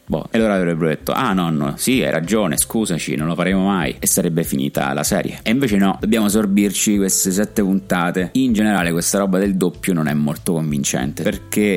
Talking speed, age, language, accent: 195 wpm, 30-49, Italian, native